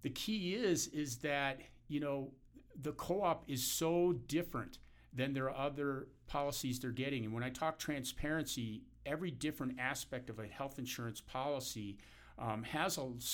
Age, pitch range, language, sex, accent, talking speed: 50-69, 125-155 Hz, English, male, American, 155 wpm